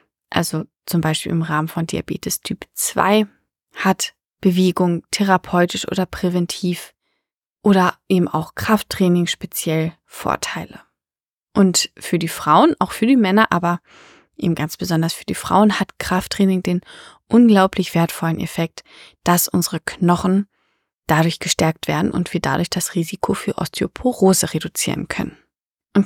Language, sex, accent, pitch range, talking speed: German, female, German, 175-205 Hz, 130 wpm